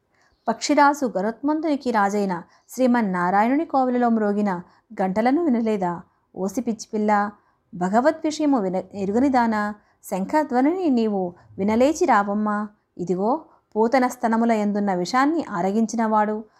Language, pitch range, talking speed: Telugu, 200-255 Hz, 85 wpm